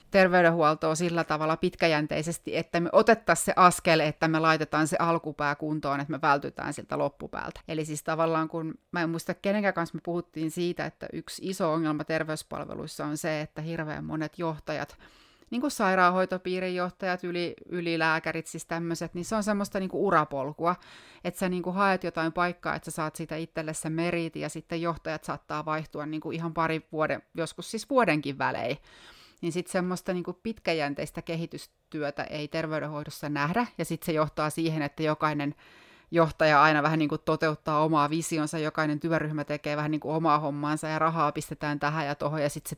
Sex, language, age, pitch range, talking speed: female, Finnish, 30-49, 150-175 Hz, 175 wpm